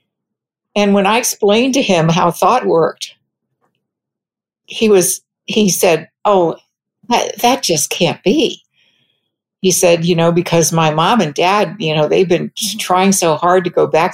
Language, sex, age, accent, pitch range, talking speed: English, female, 60-79, American, 170-205 Hz, 160 wpm